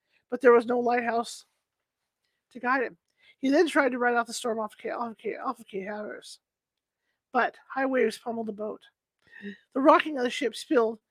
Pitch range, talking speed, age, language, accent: 220-265 Hz, 185 wpm, 40-59, English, American